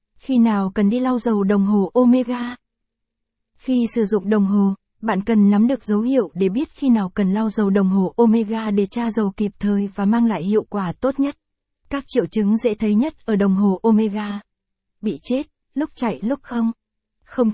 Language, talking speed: Vietnamese, 200 wpm